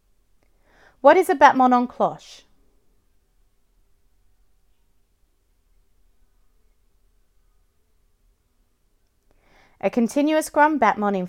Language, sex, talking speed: English, female, 60 wpm